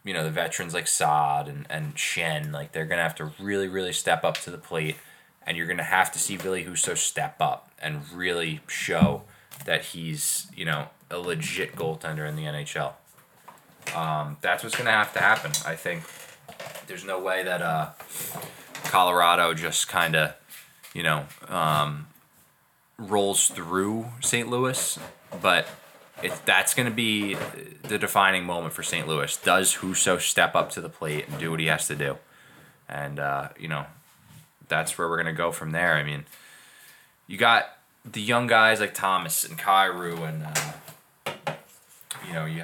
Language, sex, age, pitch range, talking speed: English, male, 20-39, 75-95 Hz, 175 wpm